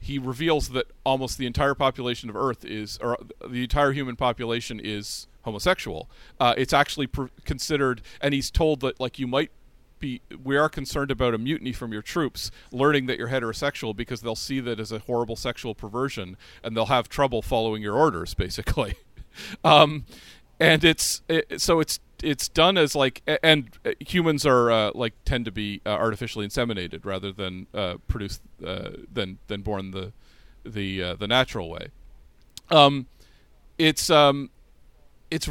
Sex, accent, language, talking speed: male, American, English, 165 wpm